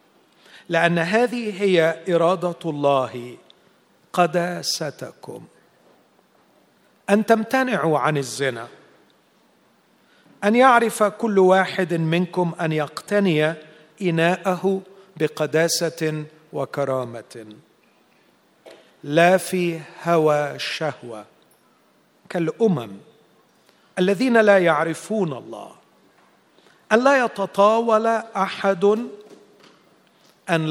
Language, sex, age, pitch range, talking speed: Arabic, male, 40-59, 155-205 Hz, 65 wpm